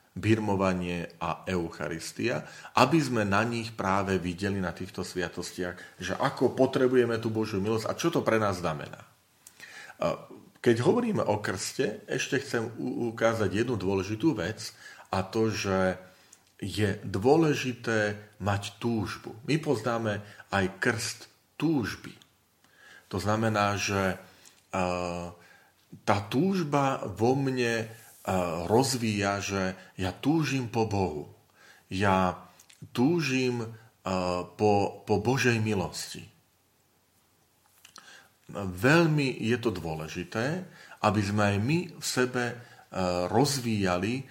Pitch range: 95-125 Hz